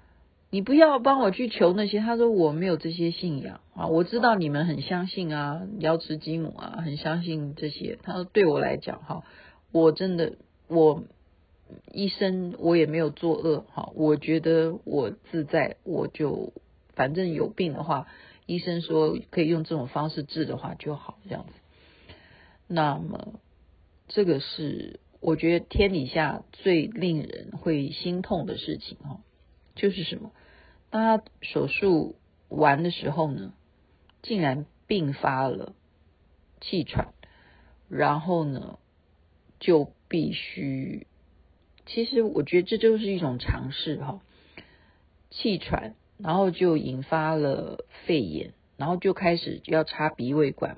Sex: female